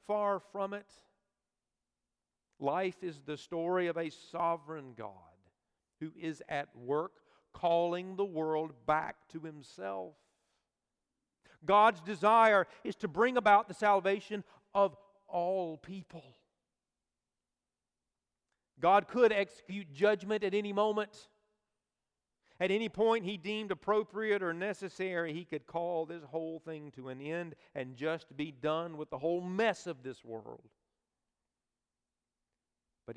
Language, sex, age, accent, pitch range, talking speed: English, male, 50-69, American, 140-200 Hz, 125 wpm